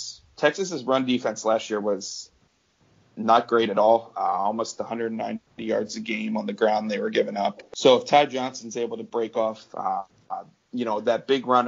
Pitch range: 110-125 Hz